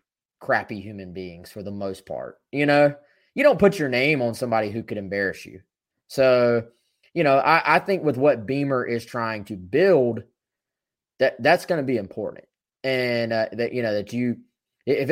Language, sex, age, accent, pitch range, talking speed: English, male, 20-39, American, 105-135 Hz, 185 wpm